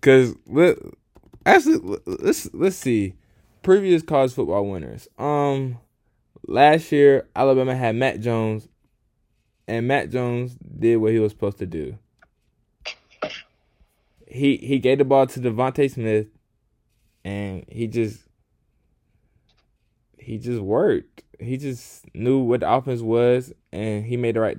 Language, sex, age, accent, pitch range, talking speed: English, male, 10-29, American, 105-130 Hz, 130 wpm